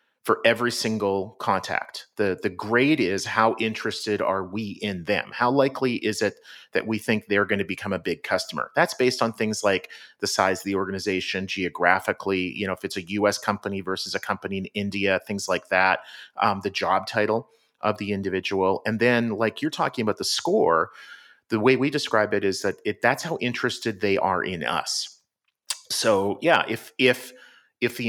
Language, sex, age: English, male, 40-59